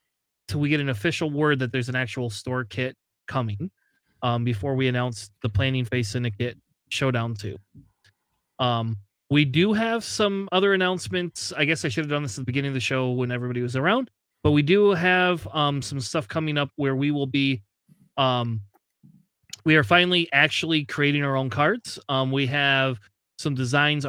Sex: male